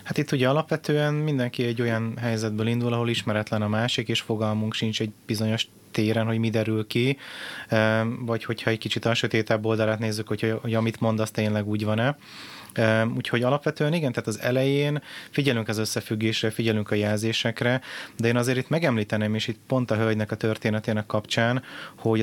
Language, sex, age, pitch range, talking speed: Hungarian, male, 30-49, 110-120 Hz, 175 wpm